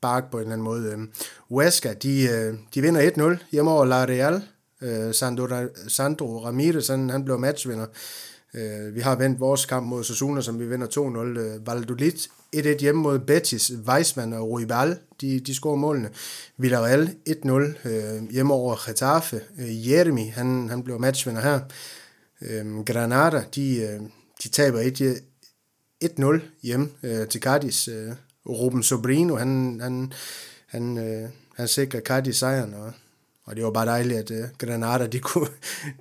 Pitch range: 115-140 Hz